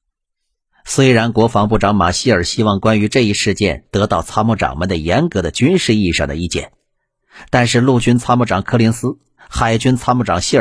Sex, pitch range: male, 100-130 Hz